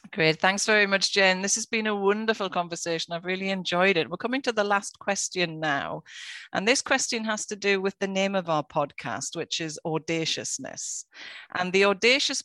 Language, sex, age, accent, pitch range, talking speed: English, female, 40-59, British, 165-215 Hz, 195 wpm